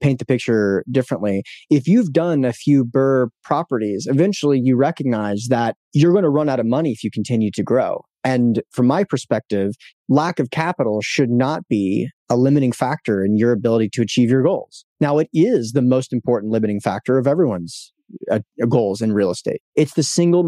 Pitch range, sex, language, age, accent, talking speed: 115-145 Hz, male, English, 30-49, American, 190 wpm